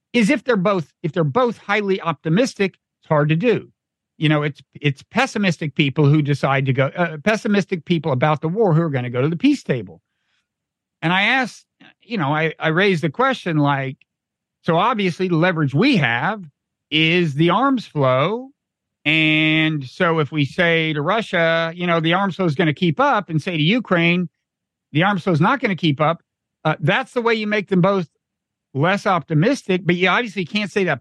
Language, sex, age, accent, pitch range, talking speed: English, male, 50-69, American, 150-195 Hz, 205 wpm